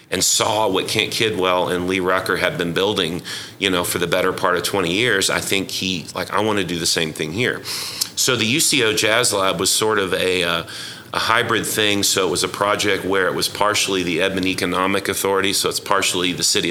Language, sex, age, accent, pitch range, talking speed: English, male, 40-59, American, 90-100 Hz, 225 wpm